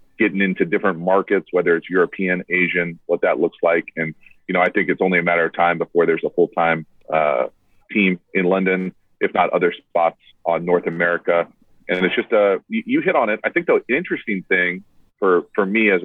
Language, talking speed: English, 210 wpm